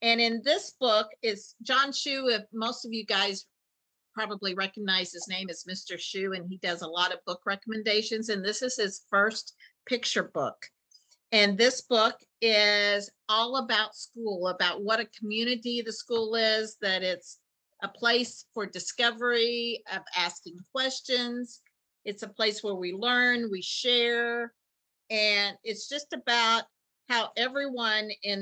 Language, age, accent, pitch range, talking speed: English, 50-69, American, 195-235 Hz, 150 wpm